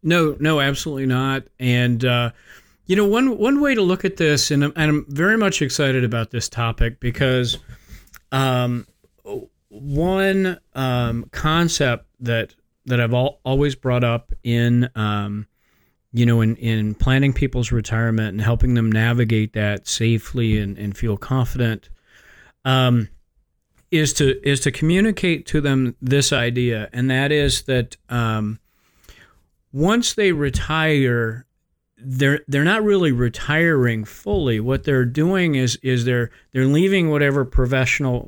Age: 40-59